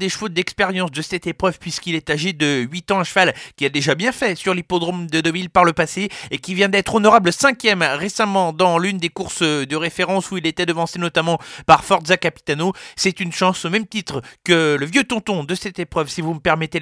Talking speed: 230 wpm